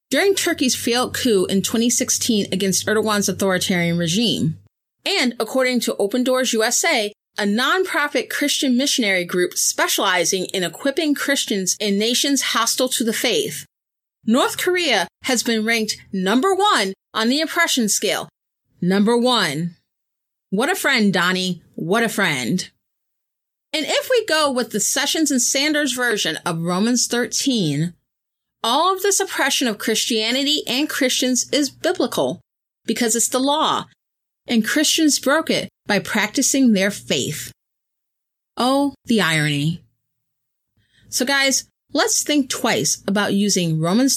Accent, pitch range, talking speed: American, 195-275 Hz, 130 wpm